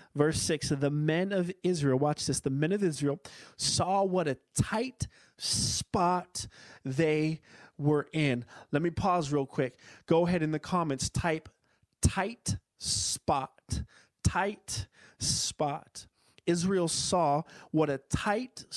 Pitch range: 135-165 Hz